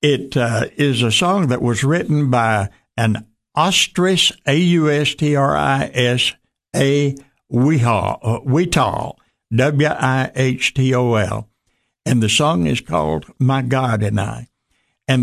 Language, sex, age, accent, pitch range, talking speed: English, male, 60-79, American, 110-145 Hz, 95 wpm